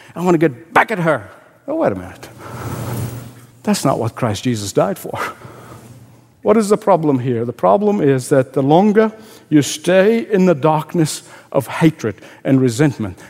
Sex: male